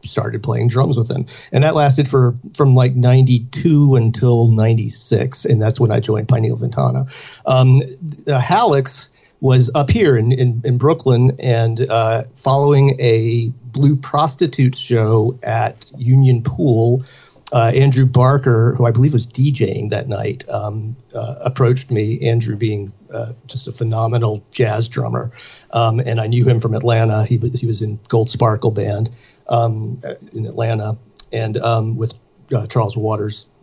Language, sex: English, male